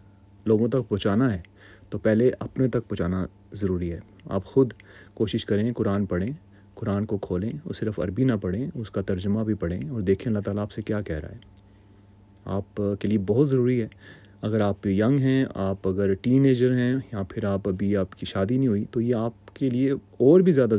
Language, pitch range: Urdu, 100-120 Hz